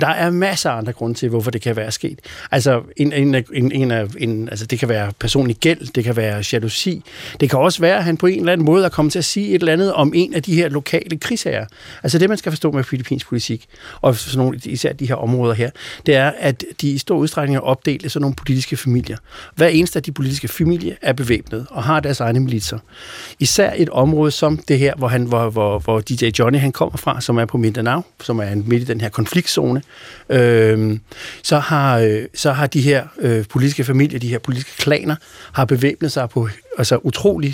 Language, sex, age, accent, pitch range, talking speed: Danish, male, 60-79, native, 120-150 Hz, 230 wpm